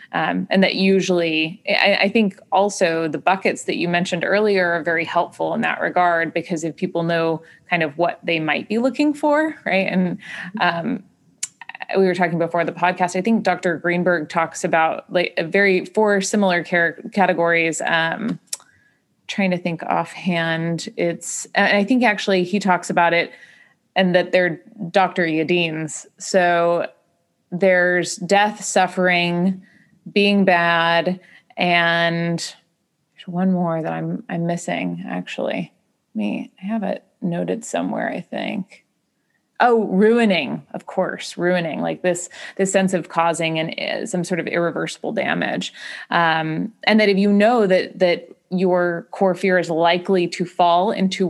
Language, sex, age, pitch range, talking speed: English, female, 20-39, 170-195 Hz, 150 wpm